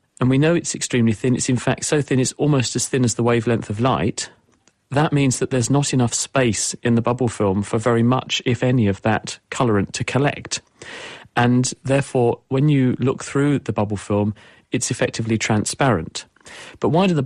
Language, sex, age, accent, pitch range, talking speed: English, male, 40-59, British, 115-135 Hz, 200 wpm